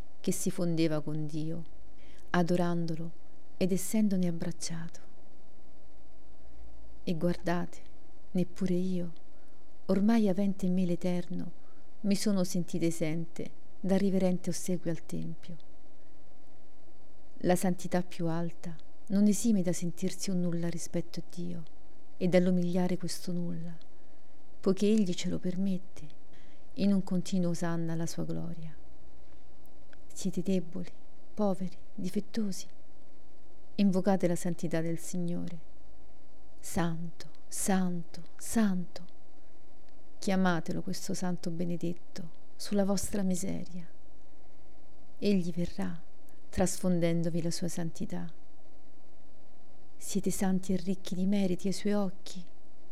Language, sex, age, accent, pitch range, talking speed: Italian, female, 40-59, native, 170-190 Hz, 100 wpm